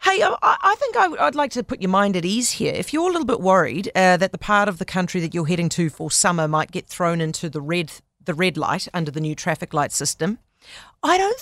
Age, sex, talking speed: 40-59, female, 245 wpm